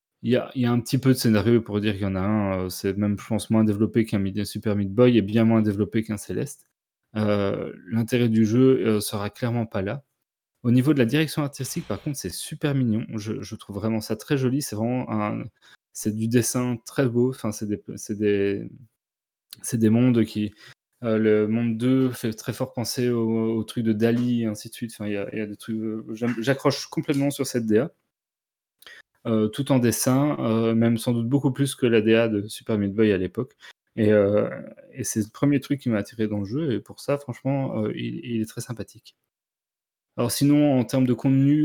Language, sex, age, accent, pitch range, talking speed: French, male, 20-39, French, 110-125 Hz, 200 wpm